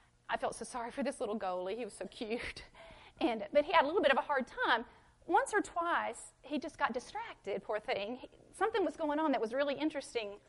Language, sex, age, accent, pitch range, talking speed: English, female, 40-59, American, 215-295 Hz, 235 wpm